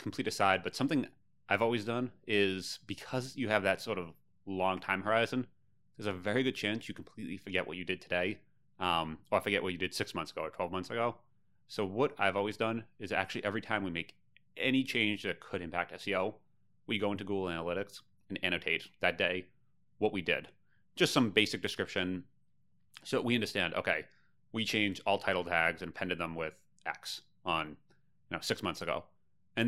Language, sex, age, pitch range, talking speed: English, male, 30-49, 95-115 Hz, 195 wpm